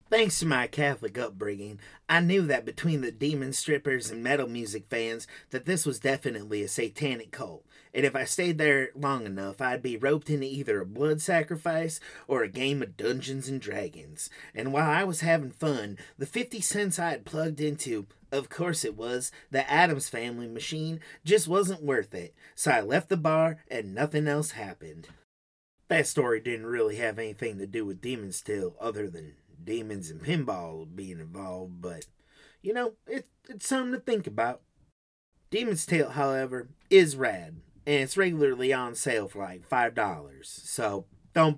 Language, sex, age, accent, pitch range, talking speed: English, male, 30-49, American, 115-160 Hz, 175 wpm